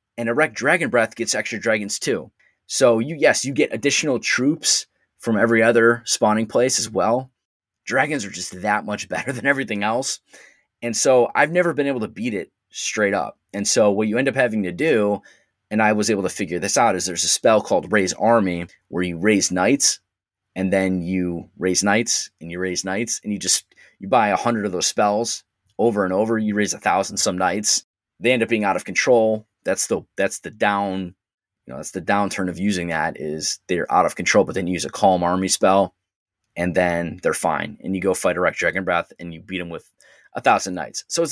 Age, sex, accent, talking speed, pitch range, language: 20-39, male, American, 220 wpm, 95-115 Hz, English